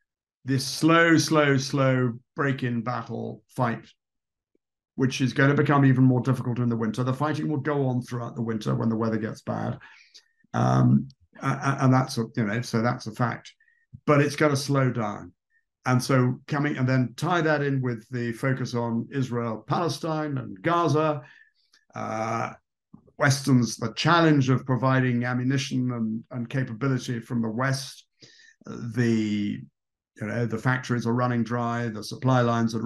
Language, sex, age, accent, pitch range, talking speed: English, male, 50-69, British, 115-145 Hz, 160 wpm